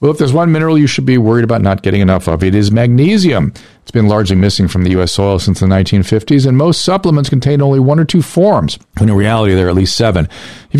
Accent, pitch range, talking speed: American, 105-150 Hz, 255 wpm